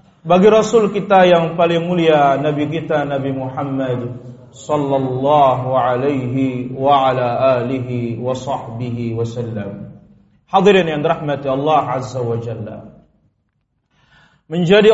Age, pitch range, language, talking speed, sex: 40-59, 135-205 Hz, Indonesian, 100 wpm, male